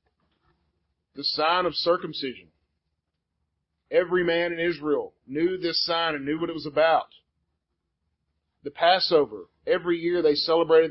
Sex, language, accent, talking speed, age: male, English, American, 125 wpm, 40-59